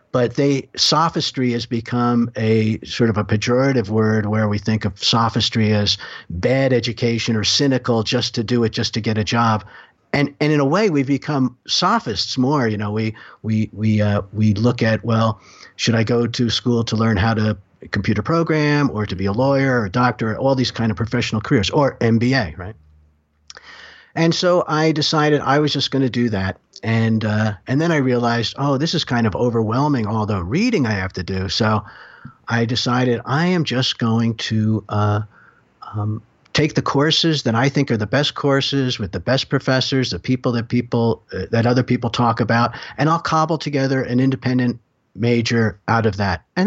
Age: 50-69